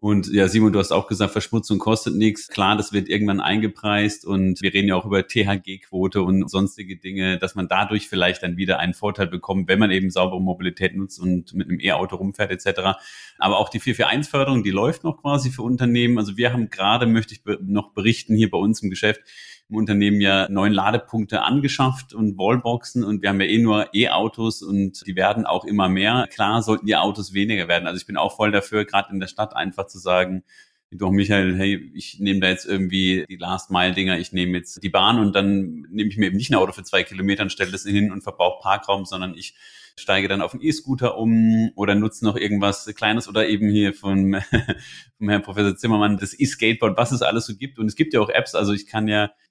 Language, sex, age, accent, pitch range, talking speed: German, male, 30-49, German, 95-110 Hz, 220 wpm